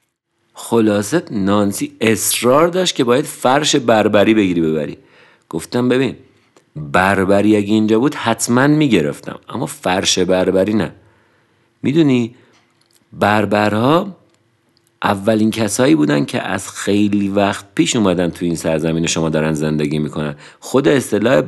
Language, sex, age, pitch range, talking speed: Persian, male, 50-69, 90-115 Hz, 115 wpm